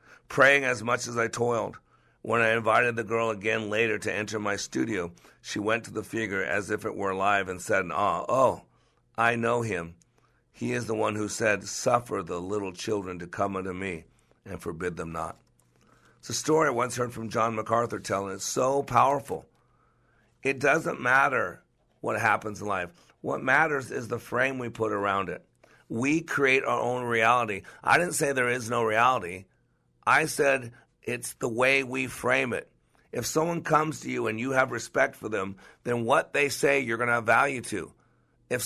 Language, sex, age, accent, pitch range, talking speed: English, male, 50-69, American, 110-135 Hz, 190 wpm